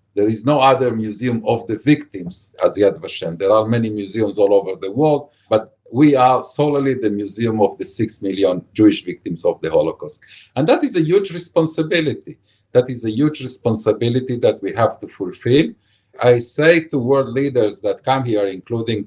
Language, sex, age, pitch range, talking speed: English, male, 50-69, 100-140 Hz, 185 wpm